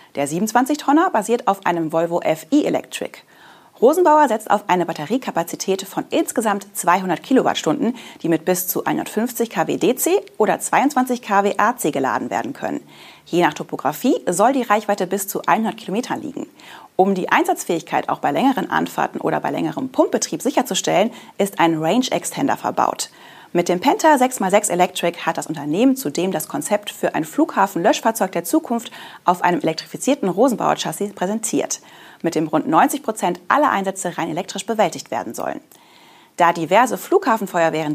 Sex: female